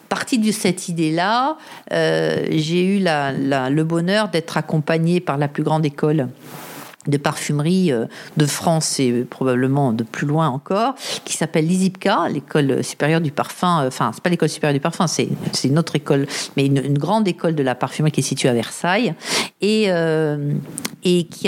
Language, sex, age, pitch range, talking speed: French, female, 50-69, 150-195 Hz, 170 wpm